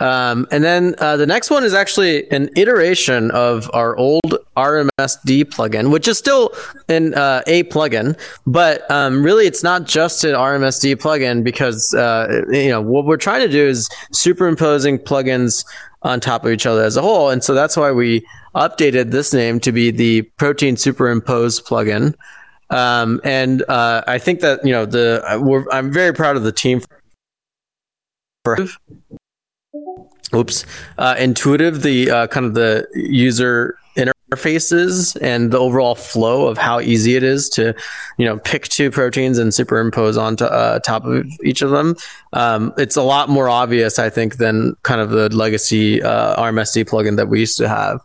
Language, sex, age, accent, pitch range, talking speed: English, male, 20-39, American, 115-145 Hz, 170 wpm